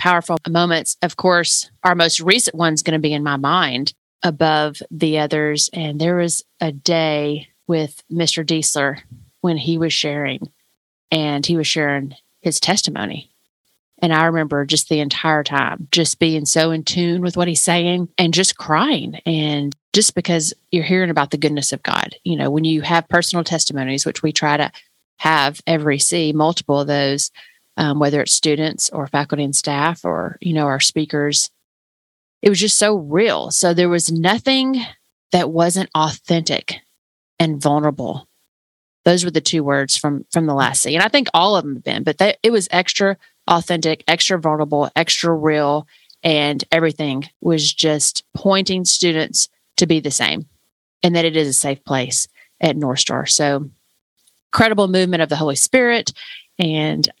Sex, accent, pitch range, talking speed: female, American, 145-175 Hz, 170 wpm